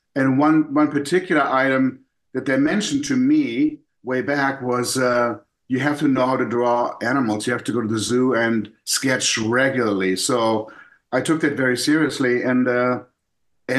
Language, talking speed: English, 175 wpm